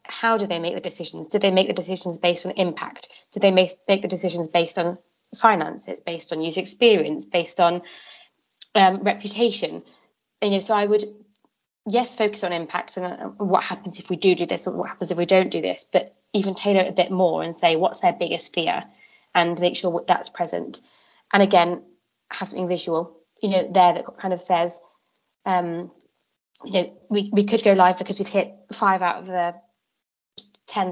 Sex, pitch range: female, 170-195 Hz